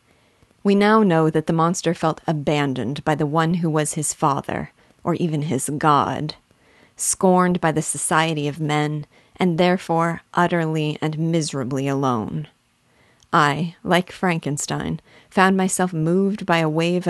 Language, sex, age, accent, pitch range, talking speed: English, female, 40-59, American, 150-185 Hz, 140 wpm